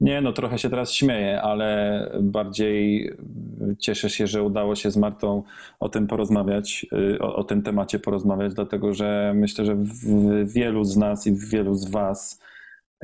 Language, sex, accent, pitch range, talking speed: Polish, male, native, 100-105 Hz, 165 wpm